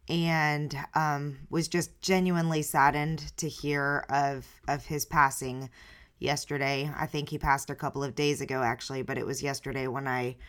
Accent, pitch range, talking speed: American, 145-175 Hz, 165 wpm